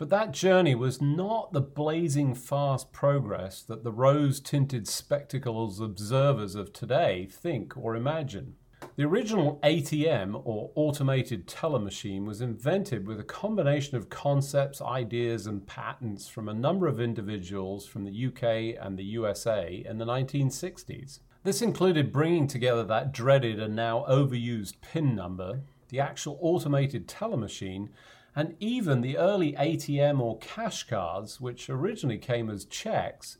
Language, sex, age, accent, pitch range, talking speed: English, male, 40-59, British, 115-145 Hz, 140 wpm